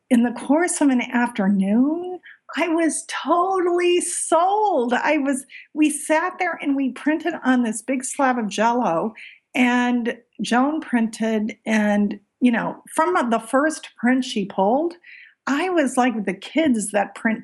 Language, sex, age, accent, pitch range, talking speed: English, female, 50-69, American, 200-260 Hz, 150 wpm